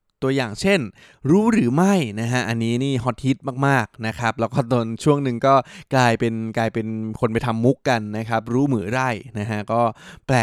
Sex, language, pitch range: male, Thai, 115-140 Hz